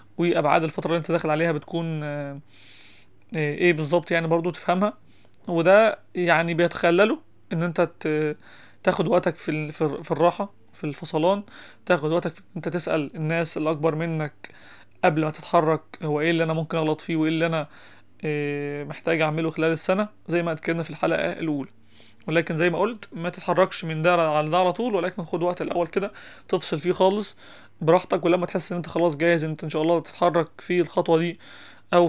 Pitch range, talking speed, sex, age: 155-180 Hz, 170 wpm, male, 20-39